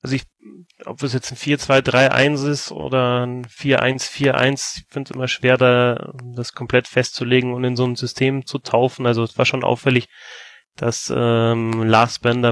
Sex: male